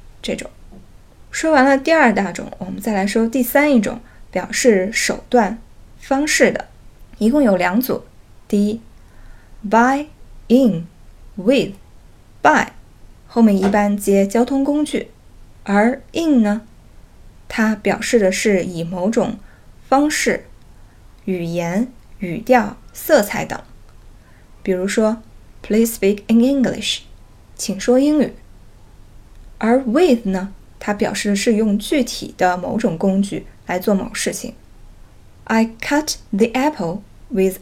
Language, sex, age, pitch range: Chinese, female, 20-39, 190-245 Hz